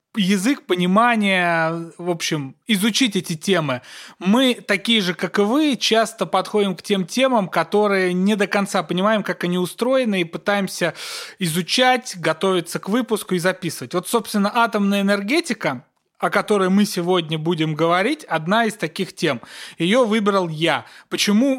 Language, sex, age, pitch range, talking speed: Russian, male, 30-49, 170-210 Hz, 145 wpm